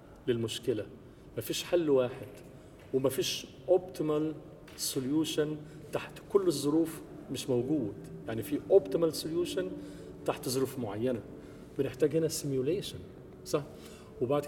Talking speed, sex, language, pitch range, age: 100 wpm, male, English, 125-165 Hz, 40-59